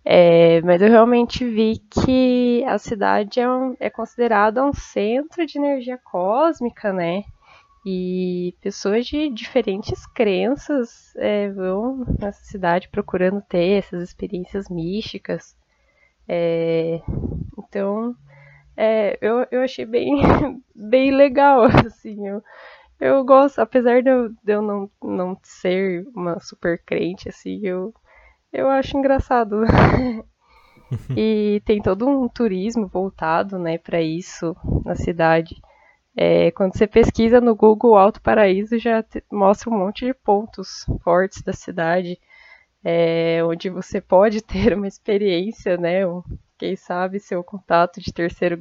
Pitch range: 180-235 Hz